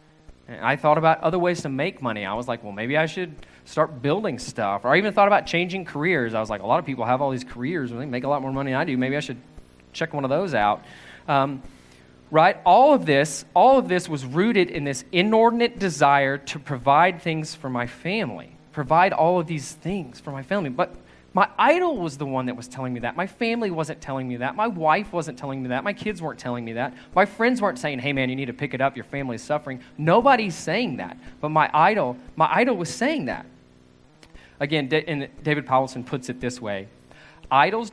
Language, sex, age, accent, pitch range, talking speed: English, male, 20-39, American, 120-165 Hz, 230 wpm